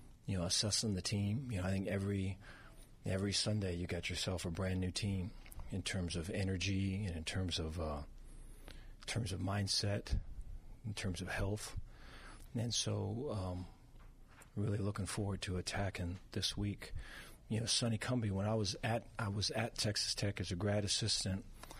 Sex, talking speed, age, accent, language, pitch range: male, 175 wpm, 40-59, American, English, 90-110 Hz